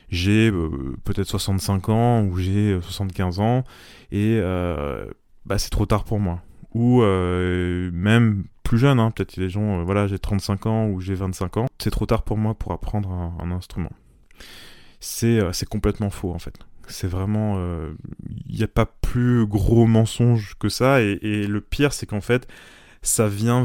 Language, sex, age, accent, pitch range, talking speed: French, male, 20-39, French, 90-110 Hz, 185 wpm